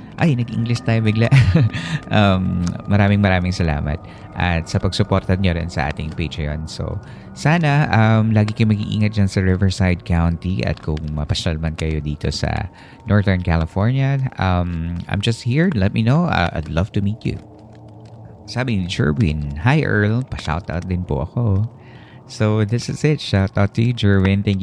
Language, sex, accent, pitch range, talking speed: Filipino, male, native, 90-110 Hz, 160 wpm